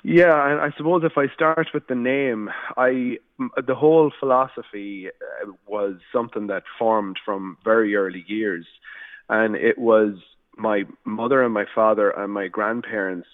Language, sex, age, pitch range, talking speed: English, male, 30-49, 105-135 Hz, 150 wpm